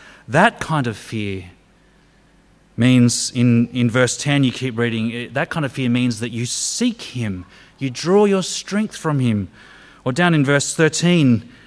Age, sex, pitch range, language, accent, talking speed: 30-49, male, 120-170 Hz, English, Australian, 165 wpm